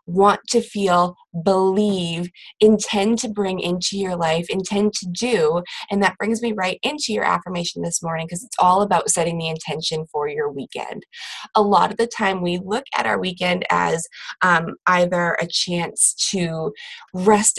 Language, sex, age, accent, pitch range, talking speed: English, female, 20-39, American, 175-220 Hz, 170 wpm